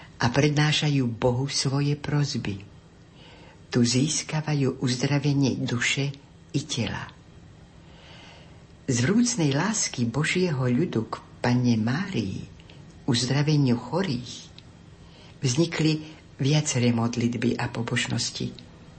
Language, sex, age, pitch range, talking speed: Slovak, female, 60-79, 120-150 Hz, 80 wpm